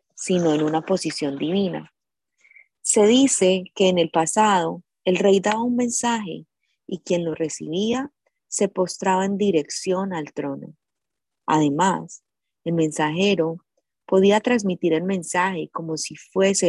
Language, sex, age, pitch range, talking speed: Spanish, female, 20-39, 155-200 Hz, 130 wpm